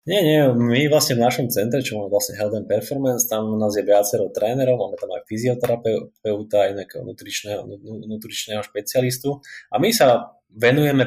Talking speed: 165 wpm